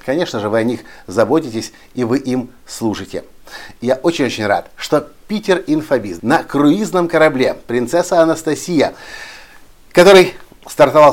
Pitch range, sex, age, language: 120-170 Hz, male, 50-69, Russian